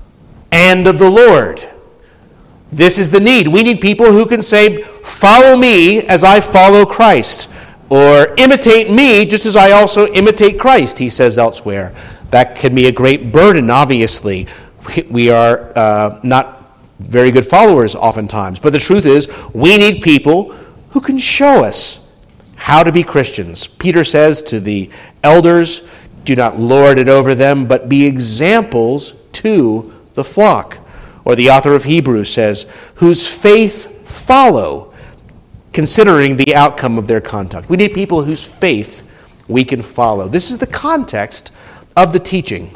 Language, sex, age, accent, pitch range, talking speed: English, male, 50-69, American, 130-200 Hz, 155 wpm